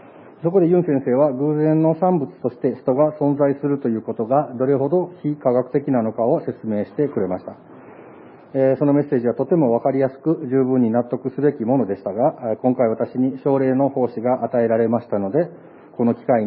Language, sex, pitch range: Japanese, male, 115-145 Hz